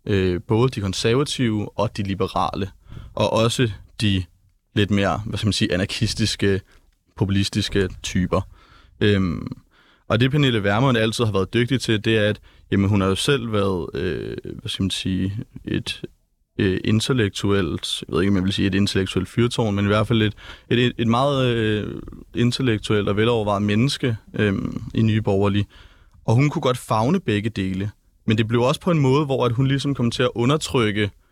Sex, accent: male, native